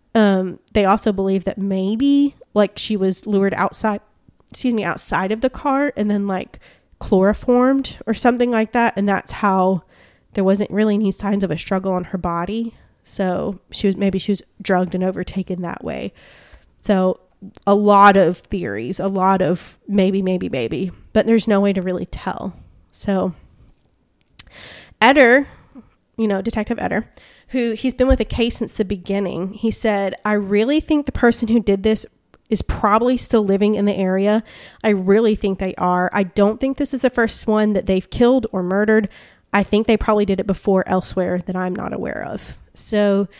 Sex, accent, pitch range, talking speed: female, American, 190-225 Hz, 185 wpm